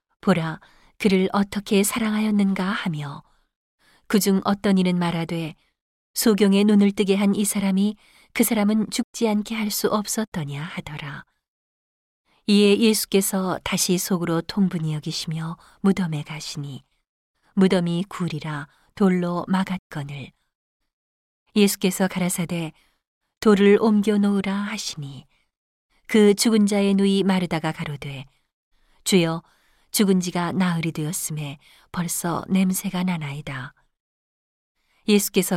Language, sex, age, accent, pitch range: Korean, female, 40-59, native, 165-205 Hz